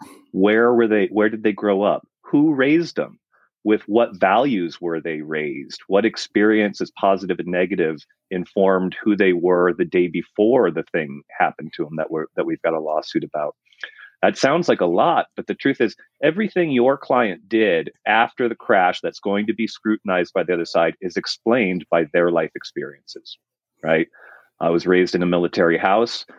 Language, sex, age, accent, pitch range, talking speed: English, male, 30-49, American, 90-130 Hz, 185 wpm